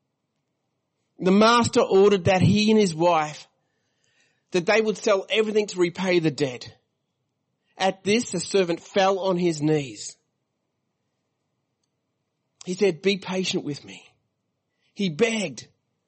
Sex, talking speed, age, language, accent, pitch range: male, 125 wpm, 30-49, English, Australian, 130-180 Hz